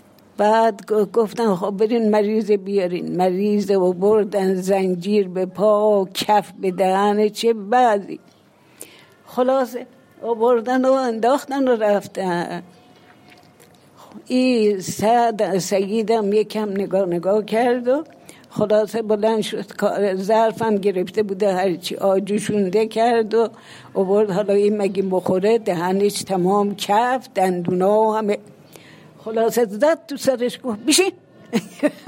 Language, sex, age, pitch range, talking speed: Persian, female, 60-79, 195-230 Hz, 105 wpm